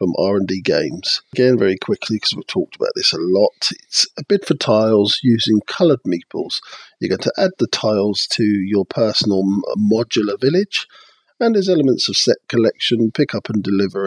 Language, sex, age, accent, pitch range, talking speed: English, male, 50-69, British, 110-155 Hz, 180 wpm